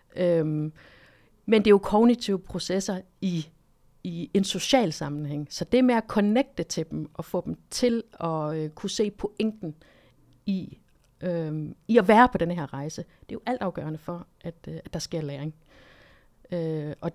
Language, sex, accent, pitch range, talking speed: Danish, female, native, 170-215 Hz, 175 wpm